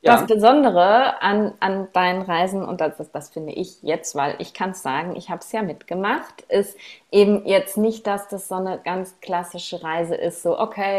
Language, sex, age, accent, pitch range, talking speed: German, female, 30-49, German, 175-205 Hz, 190 wpm